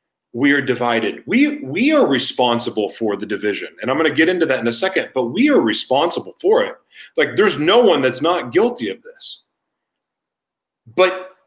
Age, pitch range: 40-59, 140-195 Hz